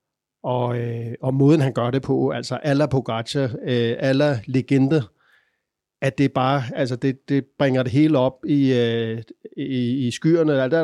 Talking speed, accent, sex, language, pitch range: 160 wpm, native, male, Danish, 120-145 Hz